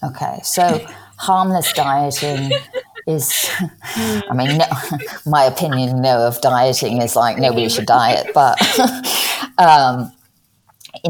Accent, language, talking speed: British, English, 115 wpm